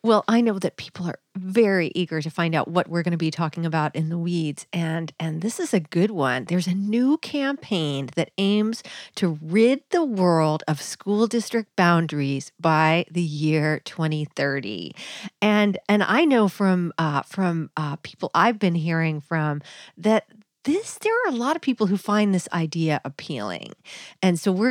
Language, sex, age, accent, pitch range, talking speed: English, female, 40-59, American, 160-215 Hz, 180 wpm